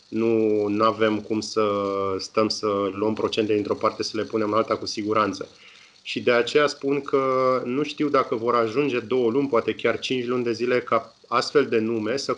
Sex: male